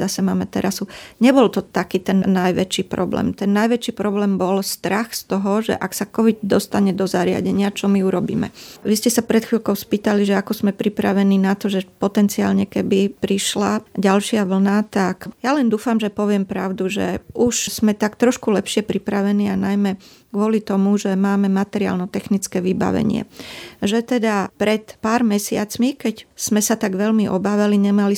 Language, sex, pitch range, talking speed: Slovak, female, 195-220 Hz, 165 wpm